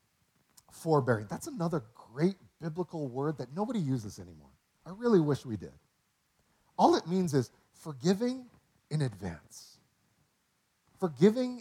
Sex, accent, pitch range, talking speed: male, American, 140-205 Hz, 120 wpm